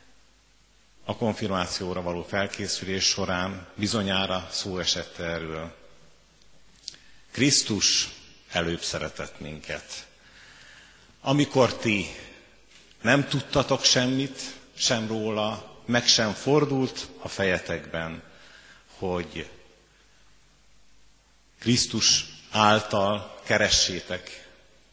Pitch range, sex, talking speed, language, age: 85-115 Hz, male, 70 wpm, Hungarian, 50-69